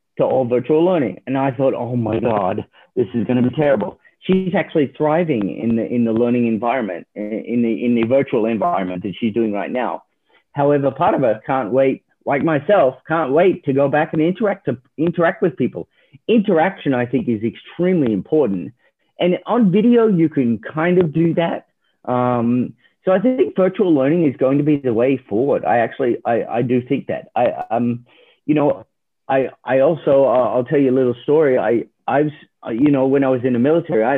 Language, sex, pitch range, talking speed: English, male, 120-165 Hz, 205 wpm